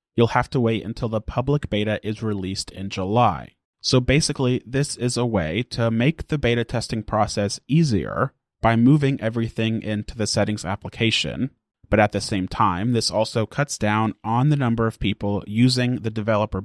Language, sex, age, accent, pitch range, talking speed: English, male, 30-49, American, 105-120 Hz, 175 wpm